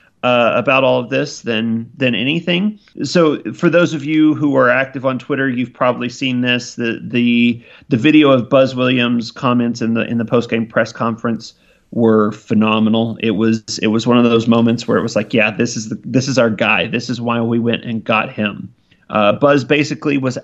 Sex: male